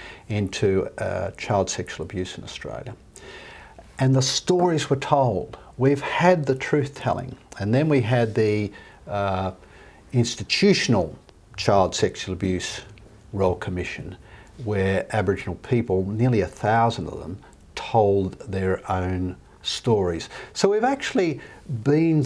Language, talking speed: English, 120 wpm